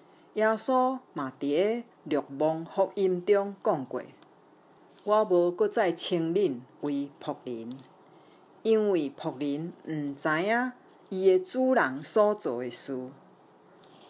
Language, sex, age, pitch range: Chinese, female, 50-69, 155-215 Hz